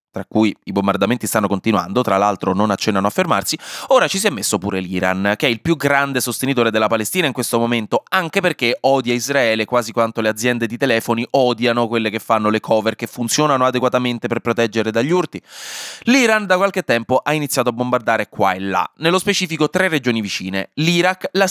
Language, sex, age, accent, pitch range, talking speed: Italian, male, 20-39, native, 110-150 Hz, 200 wpm